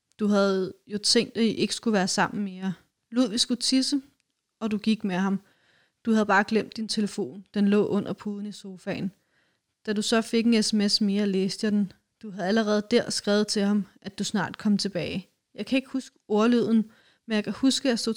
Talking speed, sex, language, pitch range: 215 wpm, female, Danish, 195-220 Hz